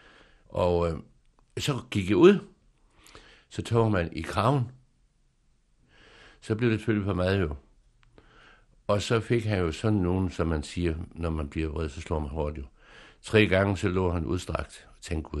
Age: 60-79